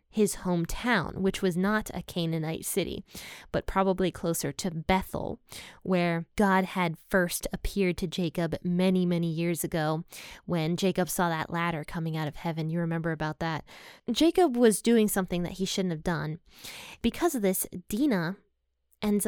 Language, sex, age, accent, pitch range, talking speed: English, female, 20-39, American, 175-210 Hz, 160 wpm